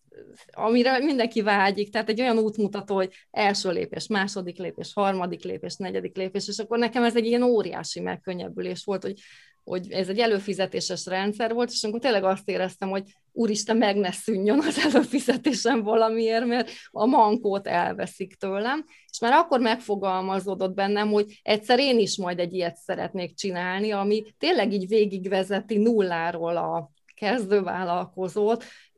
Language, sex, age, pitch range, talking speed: Hungarian, female, 20-39, 185-225 Hz, 145 wpm